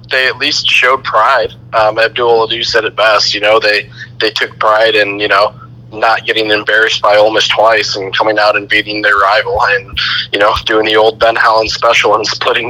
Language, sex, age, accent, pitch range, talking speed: English, male, 20-39, American, 105-120 Hz, 215 wpm